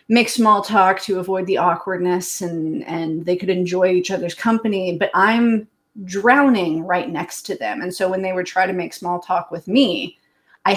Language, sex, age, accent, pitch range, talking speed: English, female, 30-49, American, 180-230 Hz, 195 wpm